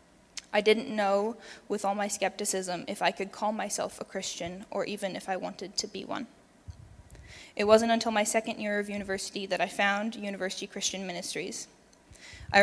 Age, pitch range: 10-29, 195-215 Hz